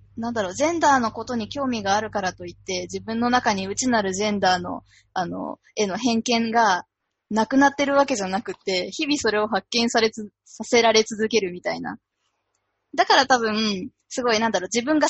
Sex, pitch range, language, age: female, 200-270 Hz, Japanese, 20-39